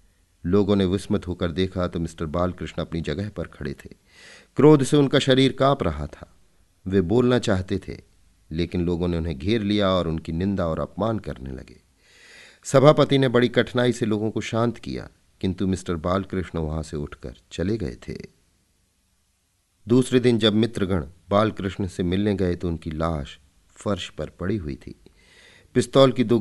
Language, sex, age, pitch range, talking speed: Hindi, male, 40-59, 85-105 Hz, 170 wpm